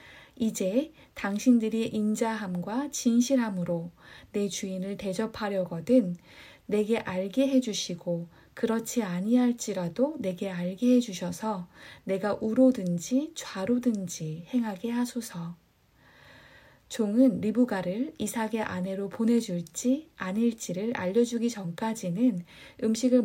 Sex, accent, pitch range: female, native, 185-240 Hz